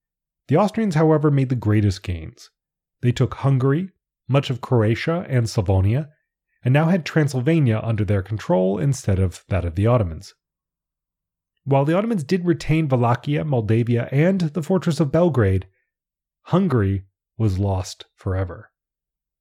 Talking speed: 135 wpm